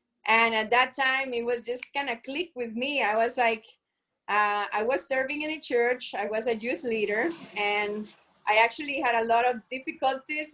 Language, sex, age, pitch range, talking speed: English, female, 20-39, 210-255 Hz, 200 wpm